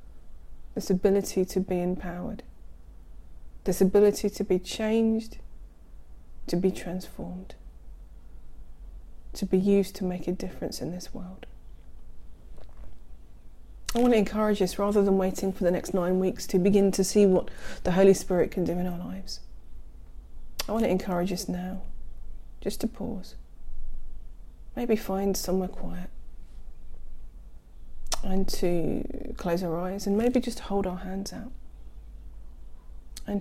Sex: female